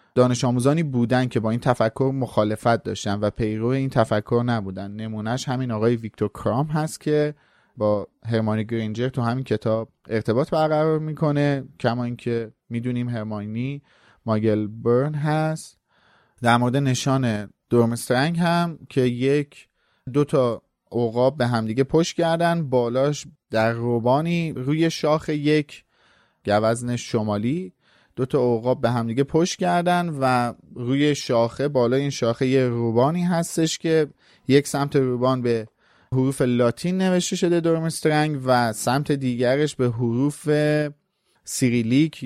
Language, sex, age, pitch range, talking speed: Persian, male, 30-49, 115-145 Hz, 130 wpm